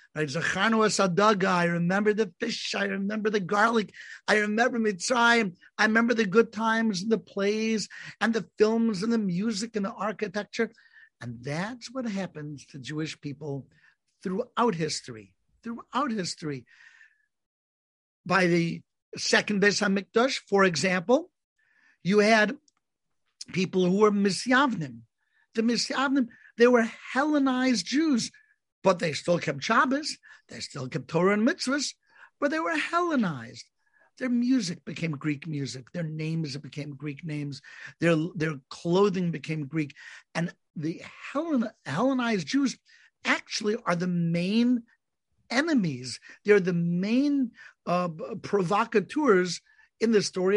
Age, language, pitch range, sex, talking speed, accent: 60-79, English, 170-240 Hz, male, 125 wpm, American